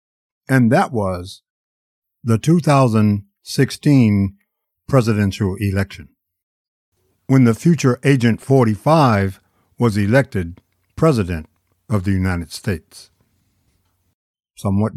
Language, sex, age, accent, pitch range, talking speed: English, male, 60-79, American, 95-150 Hz, 80 wpm